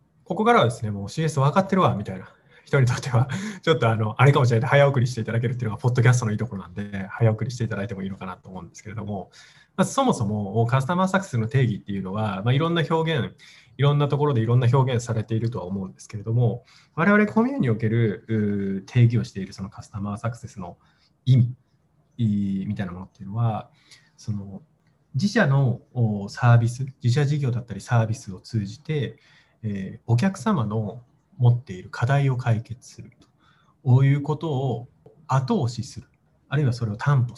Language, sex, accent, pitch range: Japanese, male, native, 110-150 Hz